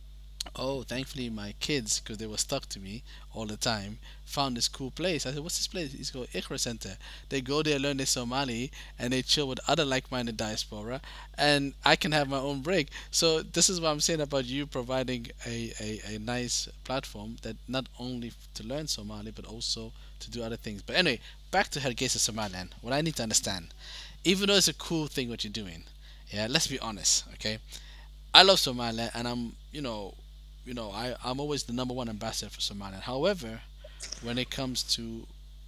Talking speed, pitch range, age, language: 200 wpm, 110-135 Hz, 20-39, English